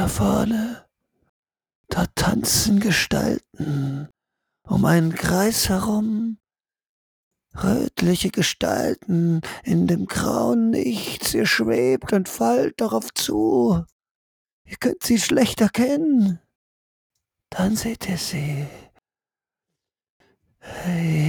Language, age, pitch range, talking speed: German, 50-69, 190-265 Hz, 85 wpm